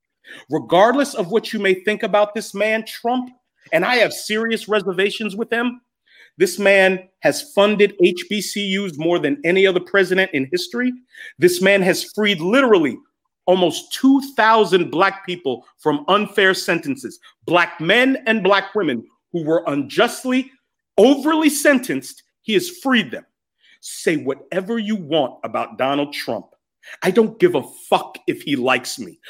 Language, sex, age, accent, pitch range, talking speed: English, male, 40-59, American, 175-245 Hz, 145 wpm